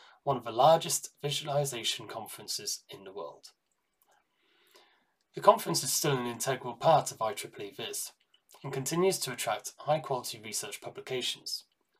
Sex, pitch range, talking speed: male, 135-170 Hz, 135 wpm